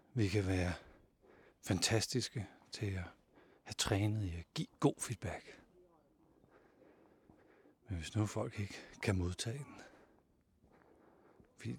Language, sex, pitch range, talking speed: Danish, male, 90-115 Hz, 105 wpm